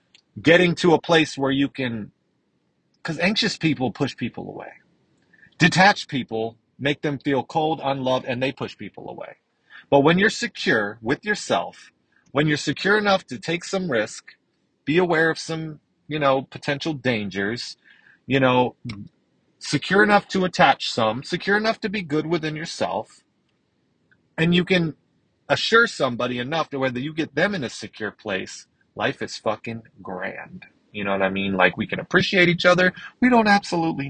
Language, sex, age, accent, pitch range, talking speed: English, male, 30-49, American, 120-170 Hz, 165 wpm